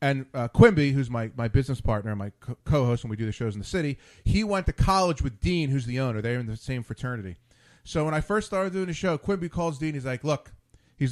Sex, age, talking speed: male, 30-49, 255 wpm